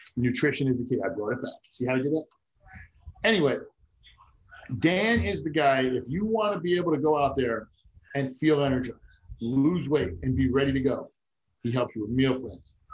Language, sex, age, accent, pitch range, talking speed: English, male, 50-69, American, 120-160 Hz, 205 wpm